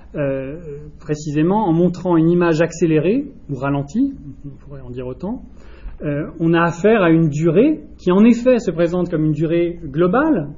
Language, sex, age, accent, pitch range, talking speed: French, male, 30-49, French, 145-180 Hz, 170 wpm